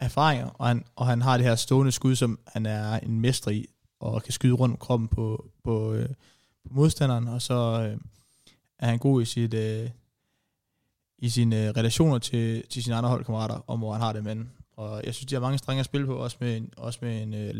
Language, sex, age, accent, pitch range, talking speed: Danish, male, 20-39, native, 115-130 Hz, 220 wpm